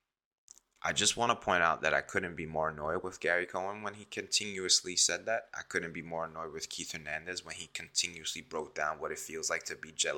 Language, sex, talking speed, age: English, male, 235 wpm, 20-39